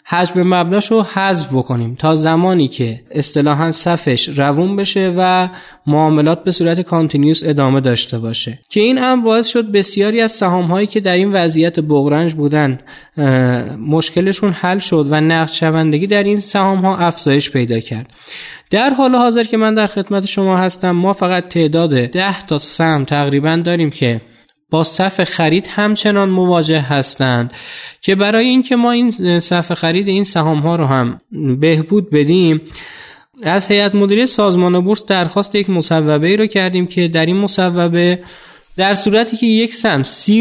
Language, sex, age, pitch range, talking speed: Persian, male, 20-39, 155-200 Hz, 160 wpm